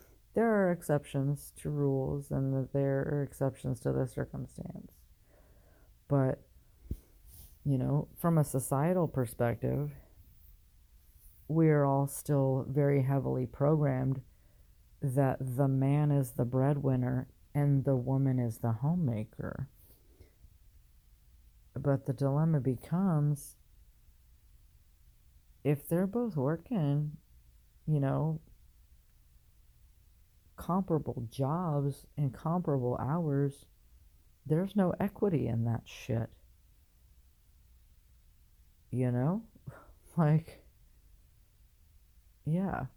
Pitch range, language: 105-150 Hz, English